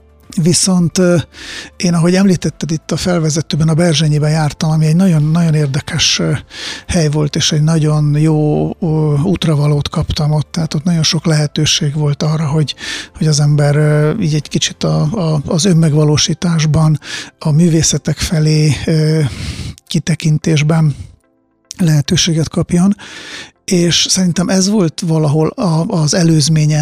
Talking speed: 120 wpm